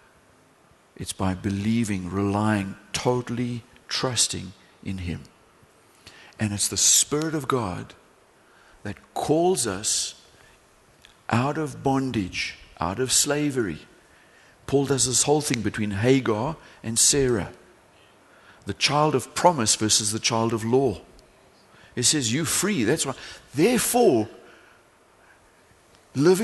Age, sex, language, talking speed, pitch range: 60-79, male, English, 110 wpm, 110-160 Hz